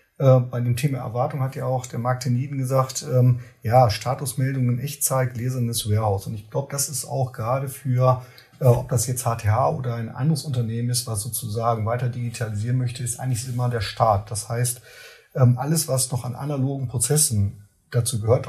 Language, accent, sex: German, German, male